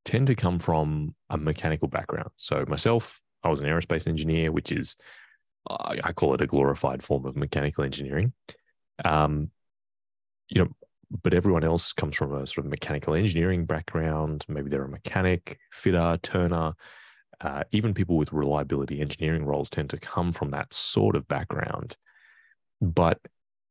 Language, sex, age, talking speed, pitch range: English, male, 20-39, 155 wpm, 70-90 Hz